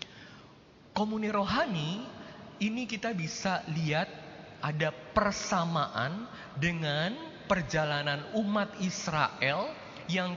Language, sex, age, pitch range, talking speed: Indonesian, male, 20-39, 145-200 Hz, 75 wpm